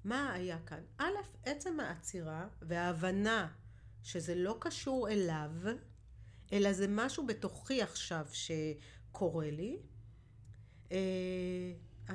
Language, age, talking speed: Hebrew, 40-59, 95 wpm